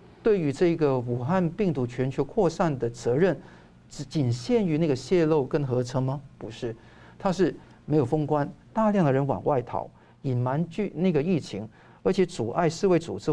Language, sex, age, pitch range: Chinese, male, 50-69, 130-175 Hz